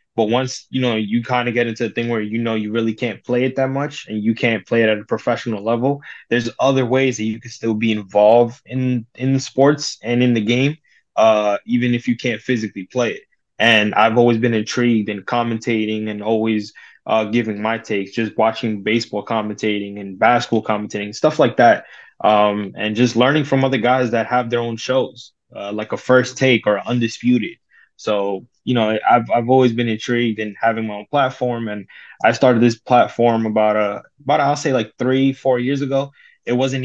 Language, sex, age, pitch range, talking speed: English, male, 20-39, 105-125 Hz, 210 wpm